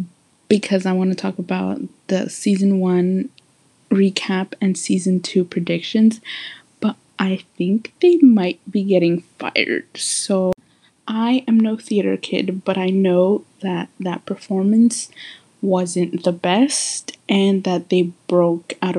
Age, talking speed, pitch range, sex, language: 20-39, 135 wpm, 185-225 Hz, female, English